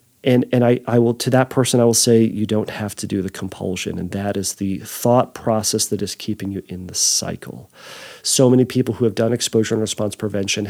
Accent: American